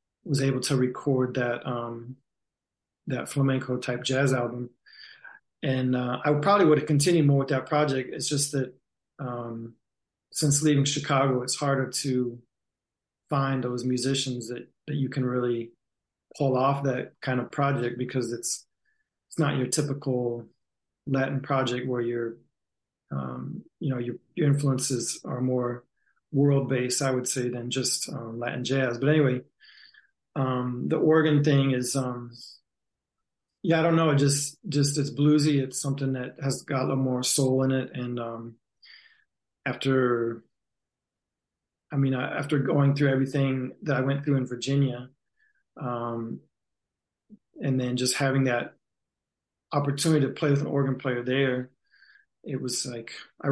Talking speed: 150 wpm